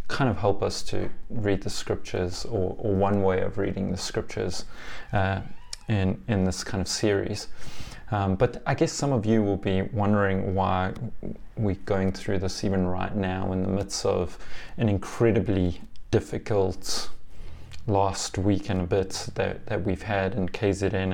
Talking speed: 165 wpm